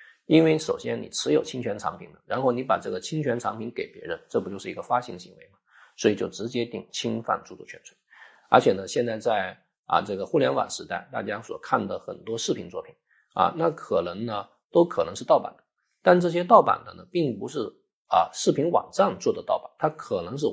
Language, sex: Chinese, male